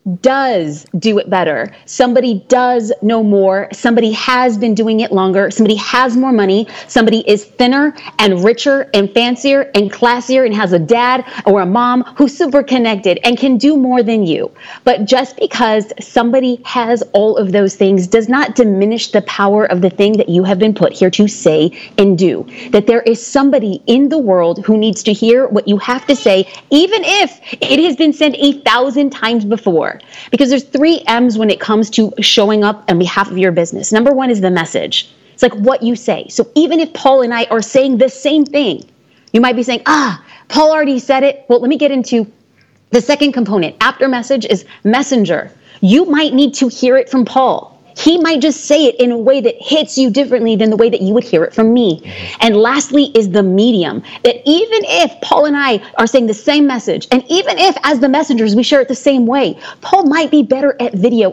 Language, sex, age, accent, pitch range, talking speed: English, female, 30-49, American, 215-275 Hz, 210 wpm